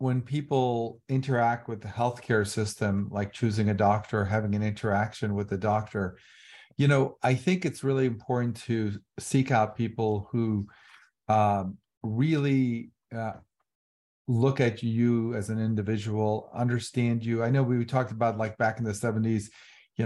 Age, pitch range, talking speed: 40-59, 105-125 Hz, 155 wpm